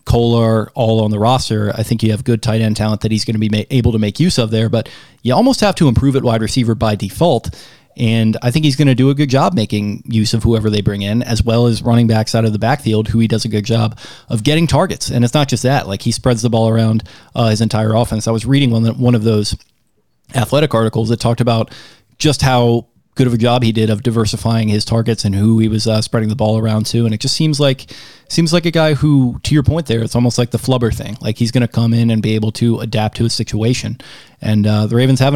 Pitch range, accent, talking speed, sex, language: 110-130 Hz, American, 270 wpm, male, English